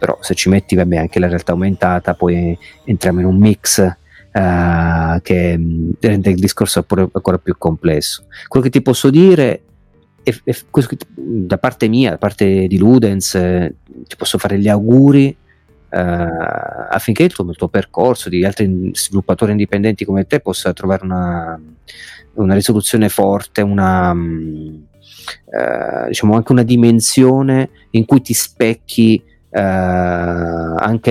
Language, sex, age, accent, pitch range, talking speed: Italian, male, 40-59, native, 90-125 Hz, 140 wpm